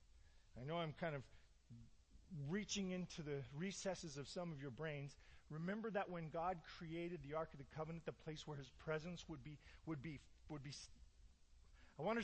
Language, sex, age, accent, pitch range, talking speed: English, male, 40-59, American, 105-170 Hz, 185 wpm